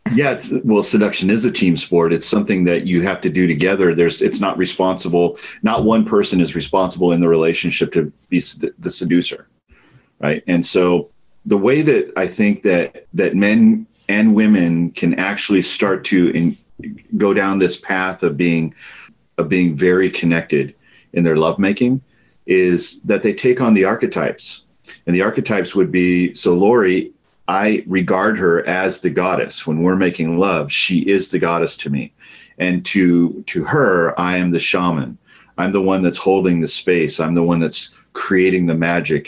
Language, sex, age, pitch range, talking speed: English, male, 40-59, 85-100 Hz, 175 wpm